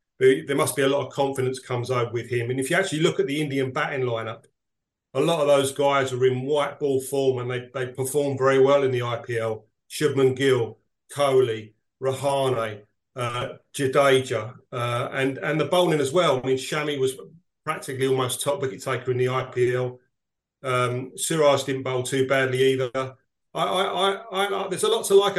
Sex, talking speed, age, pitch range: male, 190 wpm, 40-59, 130-150 Hz